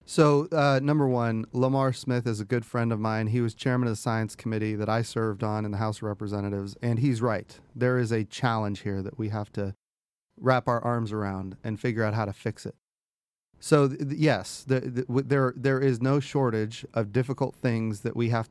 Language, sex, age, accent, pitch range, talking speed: English, male, 30-49, American, 110-125 Hz, 225 wpm